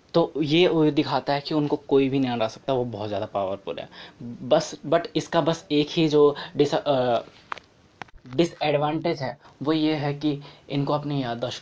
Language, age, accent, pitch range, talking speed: Hindi, 20-39, native, 130-155 Hz, 175 wpm